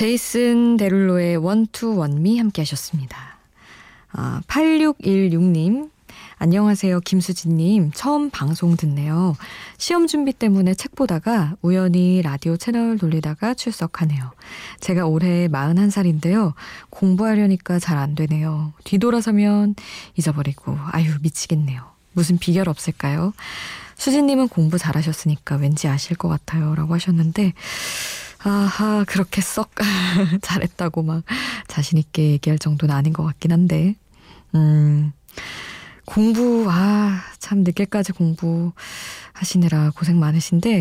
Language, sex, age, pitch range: Korean, female, 20-39, 160-205 Hz